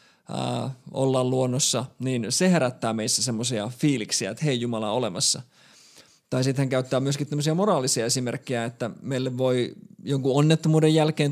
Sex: male